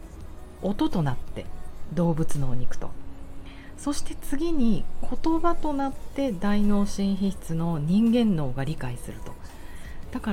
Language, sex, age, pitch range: Japanese, female, 40-59, 135-225 Hz